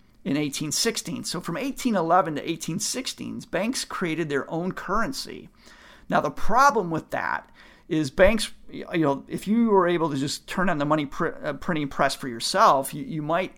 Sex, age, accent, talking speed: male, 50-69, American, 155 wpm